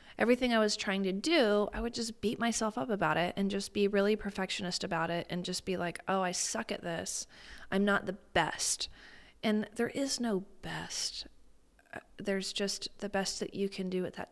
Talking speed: 205 wpm